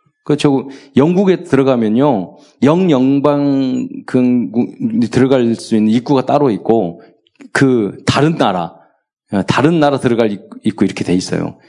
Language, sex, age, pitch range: Korean, male, 40-59, 115-160 Hz